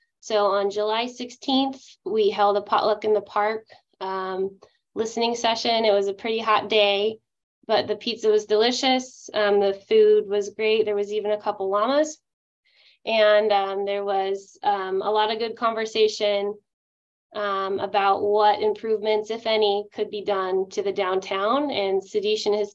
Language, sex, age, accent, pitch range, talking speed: English, female, 20-39, American, 195-225 Hz, 165 wpm